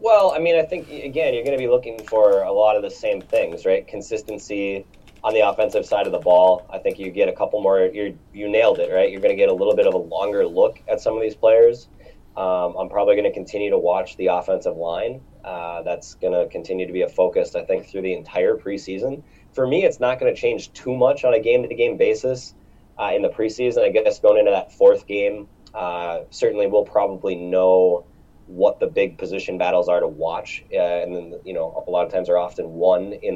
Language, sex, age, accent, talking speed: English, male, 20-39, American, 235 wpm